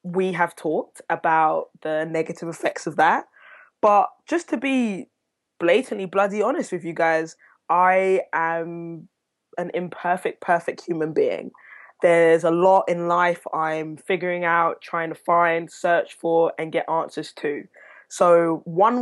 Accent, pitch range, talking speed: British, 165-210 Hz, 140 wpm